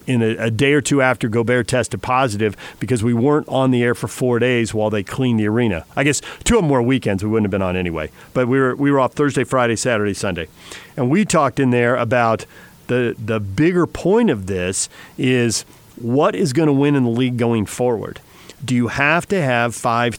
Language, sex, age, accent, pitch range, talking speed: English, male, 40-59, American, 115-145 Hz, 225 wpm